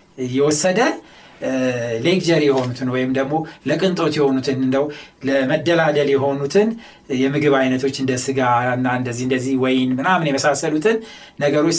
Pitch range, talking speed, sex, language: 135-195 Hz, 100 wpm, male, Amharic